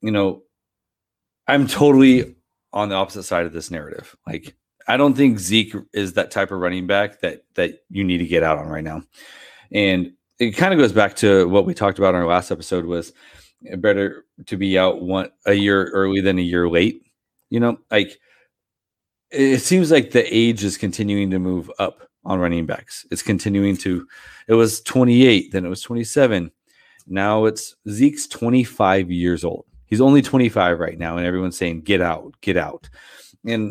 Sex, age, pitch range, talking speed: male, 30-49, 90-110 Hz, 185 wpm